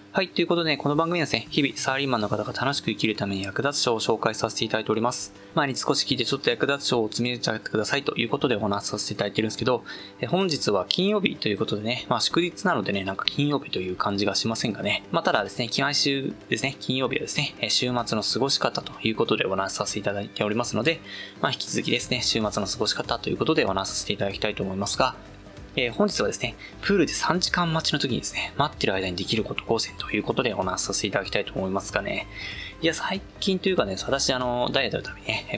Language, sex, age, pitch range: Japanese, male, 20-39, 105-155 Hz